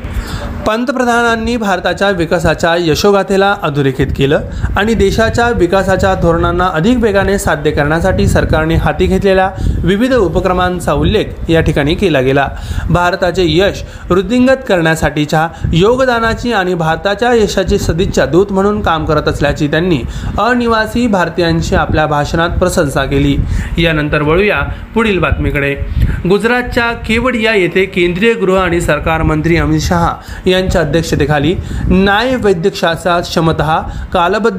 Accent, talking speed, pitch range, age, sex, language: native, 110 wpm, 160-205 Hz, 30-49, male, Marathi